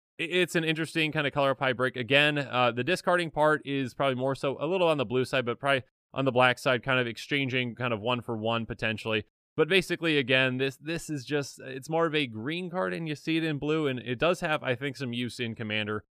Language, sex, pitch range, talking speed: English, male, 120-160 Hz, 250 wpm